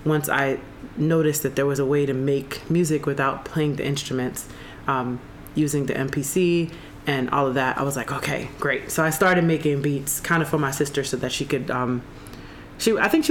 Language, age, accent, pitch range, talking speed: English, 30-49, American, 135-155 Hz, 210 wpm